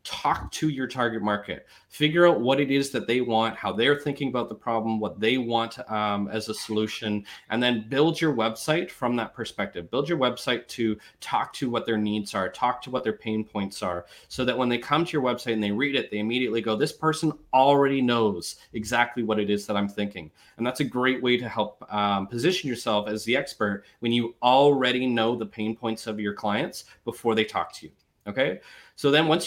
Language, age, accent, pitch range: English, 30-49, American, 110-135 Hz